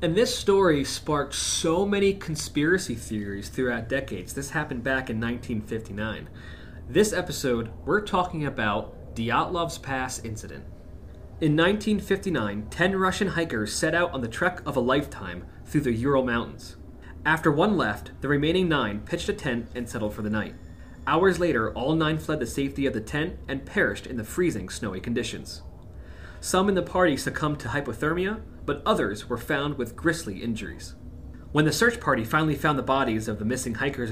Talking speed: 170 wpm